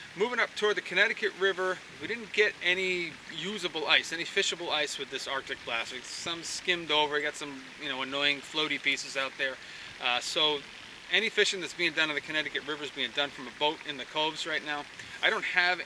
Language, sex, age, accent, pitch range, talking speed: English, male, 30-49, American, 135-175 Hz, 210 wpm